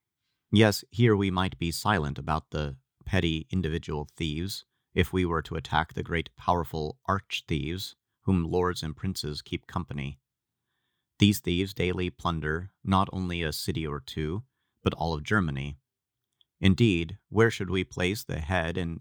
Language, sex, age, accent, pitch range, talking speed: English, male, 30-49, American, 75-95 Hz, 150 wpm